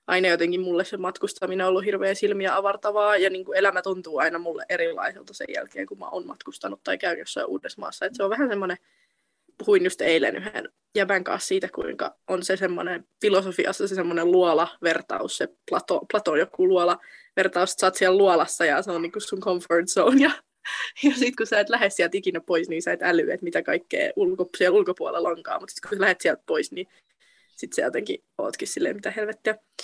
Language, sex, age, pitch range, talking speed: Finnish, female, 20-39, 190-265 Hz, 195 wpm